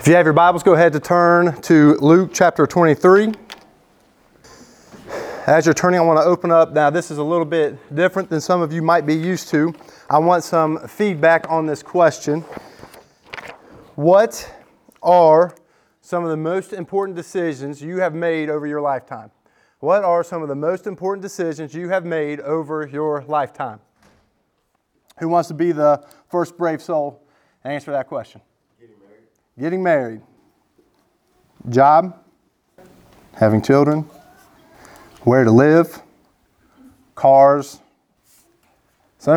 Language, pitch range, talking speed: English, 130-170 Hz, 140 wpm